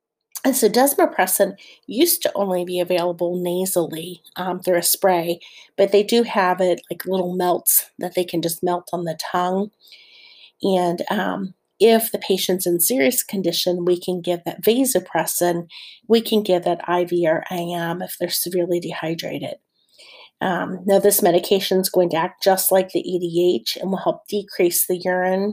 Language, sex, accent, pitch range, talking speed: English, female, American, 175-200 Hz, 165 wpm